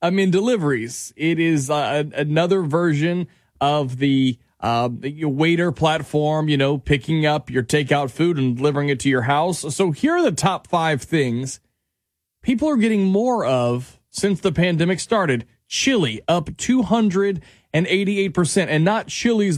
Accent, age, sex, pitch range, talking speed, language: American, 30-49, male, 140-195 Hz, 145 wpm, English